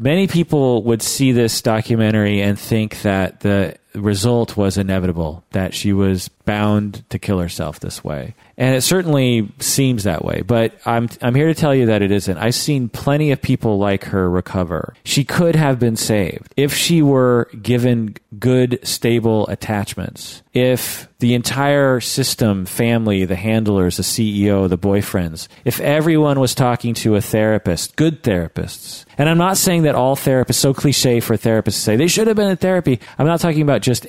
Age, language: 40-59, English